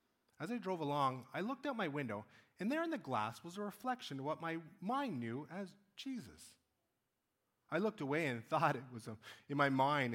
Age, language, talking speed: 30-49, English, 200 wpm